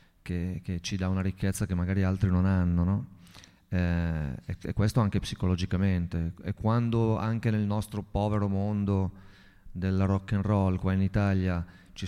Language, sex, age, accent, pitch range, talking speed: Italian, male, 30-49, native, 90-105 Hz, 165 wpm